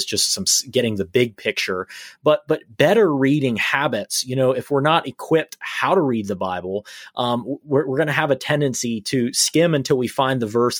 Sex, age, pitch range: male, 30-49, 115-150 Hz